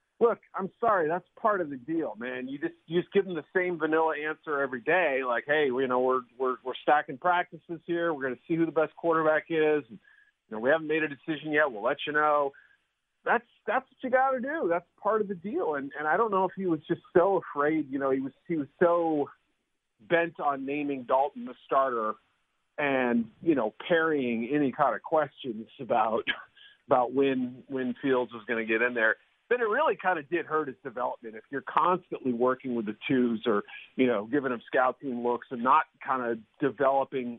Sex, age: male, 40-59